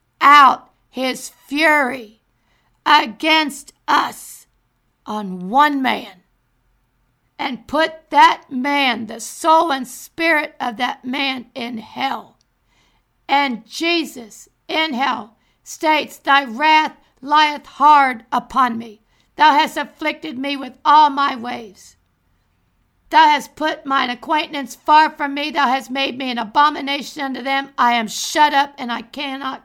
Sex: female